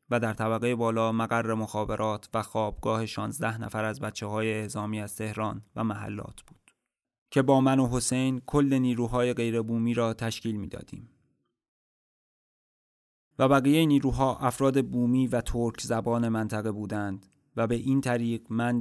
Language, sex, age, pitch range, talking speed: Persian, male, 20-39, 110-120 Hz, 145 wpm